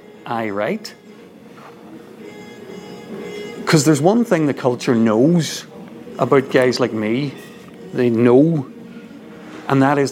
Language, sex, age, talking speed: English, male, 40-59, 105 wpm